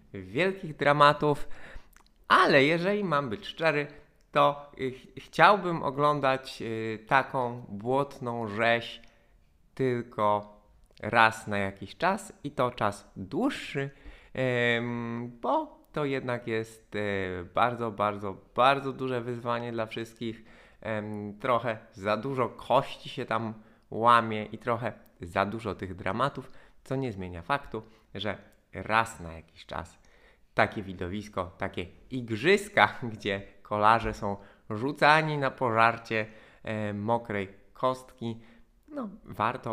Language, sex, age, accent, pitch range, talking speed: Polish, male, 20-39, native, 100-130 Hz, 105 wpm